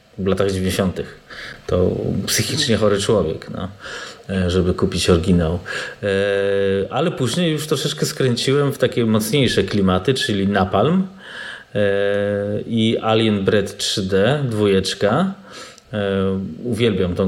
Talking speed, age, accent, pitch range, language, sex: 100 wpm, 30-49, native, 100-115 Hz, Polish, male